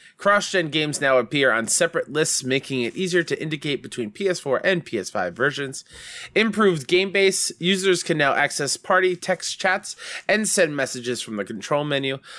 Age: 20-39